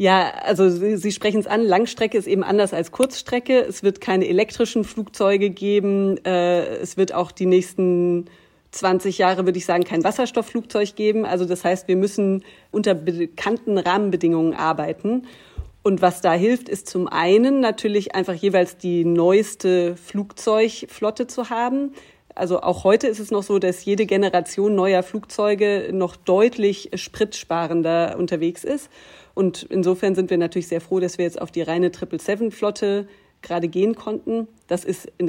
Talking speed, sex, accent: 155 wpm, female, German